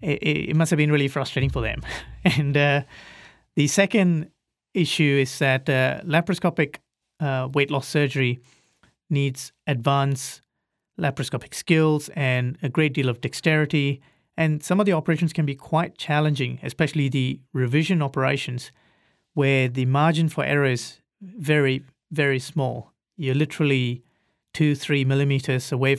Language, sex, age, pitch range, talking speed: English, male, 30-49, 135-155 Hz, 135 wpm